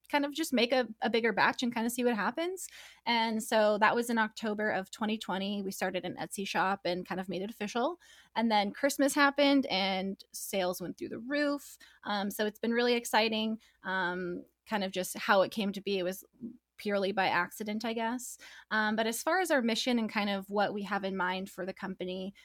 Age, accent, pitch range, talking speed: 20-39, American, 195-240 Hz, 220 wpm